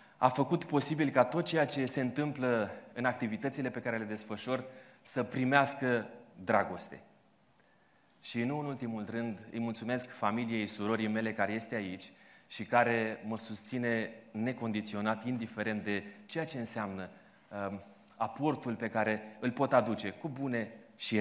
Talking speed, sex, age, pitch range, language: 140 wpm, male, 30-49, 115-145 Hz, Romanian